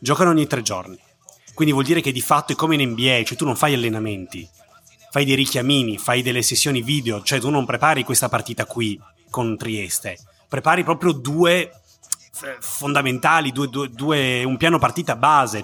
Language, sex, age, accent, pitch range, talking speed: Italian, male, 30-49, native, 120-155 Hz, 175 wpm